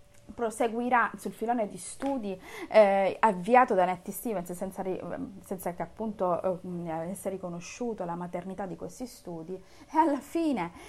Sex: female